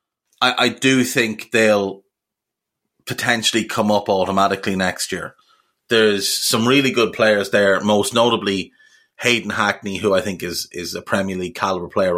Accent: Irish